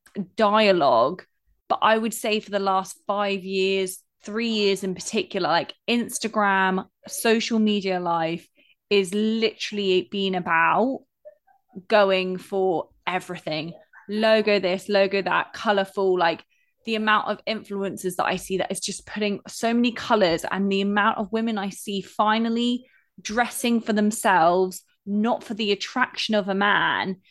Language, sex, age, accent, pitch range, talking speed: English, female, 20-39, British, 195-240 Hz, 140 wpm